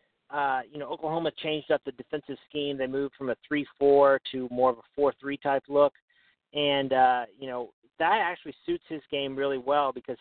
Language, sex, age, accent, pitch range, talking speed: English, male, 40-59, American, 130-155 Hz, 195 wpm